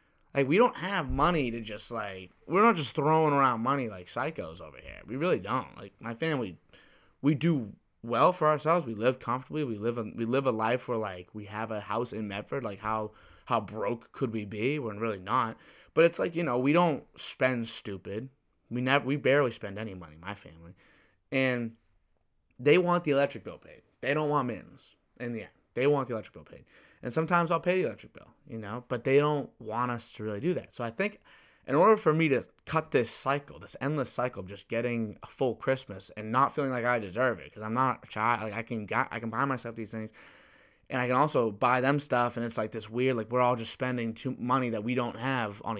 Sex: male